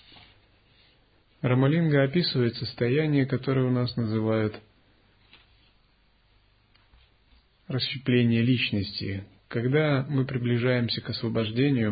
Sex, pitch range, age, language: male, 105-130 Hz, 30-49, Russian